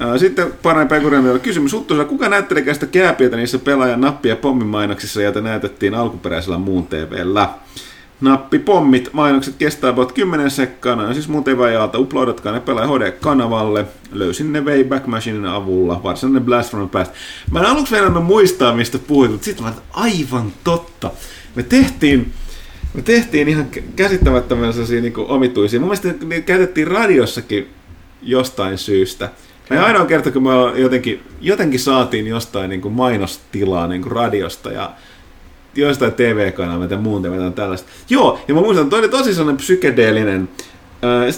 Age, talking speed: 30-49, 140 wpm